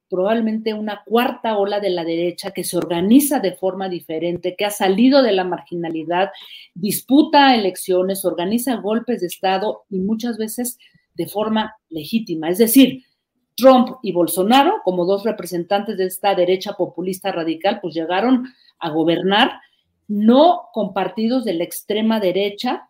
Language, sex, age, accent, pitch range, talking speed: Spanish, female, 40-59, Mexican, 180-225 Hz, 145 wpm